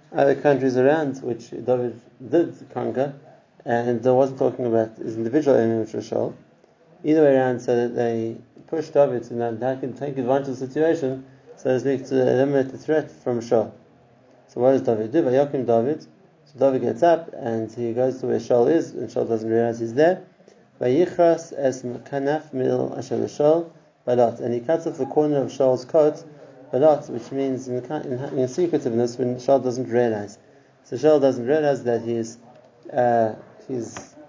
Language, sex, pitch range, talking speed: English, male, 120-150 Hz, 165 wpm